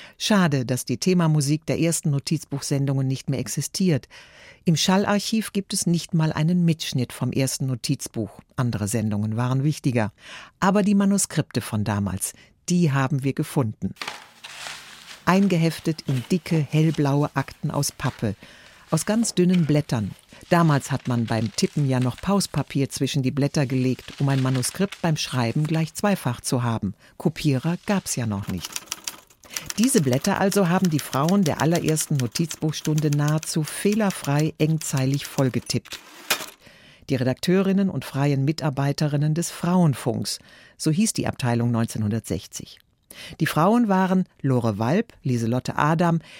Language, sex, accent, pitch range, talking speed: German, female, German, 130-170 Hz, 135 wpm